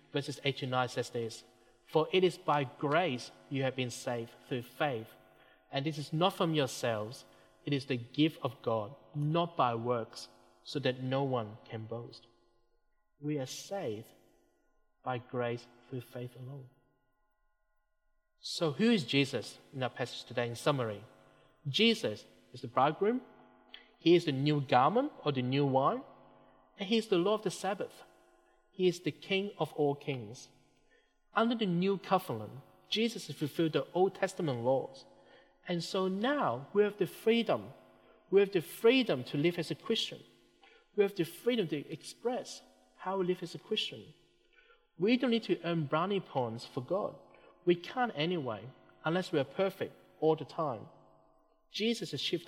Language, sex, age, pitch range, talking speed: English, male, 30-49, 130-195 Hz, 160 wpm